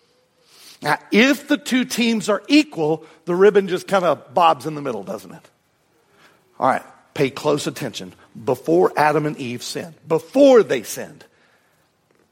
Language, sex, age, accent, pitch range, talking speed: English, male, 50-69, American, 175-235 Hz, 150 wpm